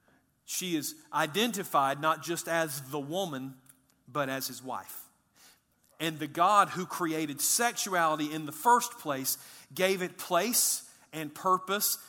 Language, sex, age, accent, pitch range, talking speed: English, male, 40-59, American, 155-185 Hz, 135 wpm